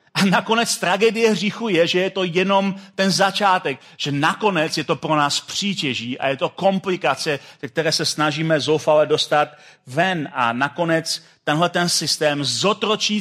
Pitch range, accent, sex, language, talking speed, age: 150-200 Hz, native, male, Czech, 150 wpm, 40-59